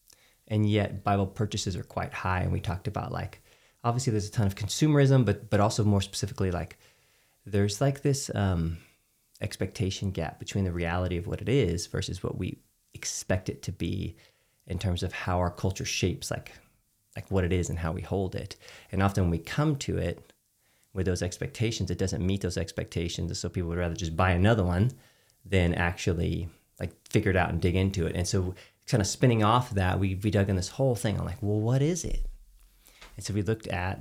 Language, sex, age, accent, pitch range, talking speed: English, male, 30-49, American, 90-110 Hz, 210 wpm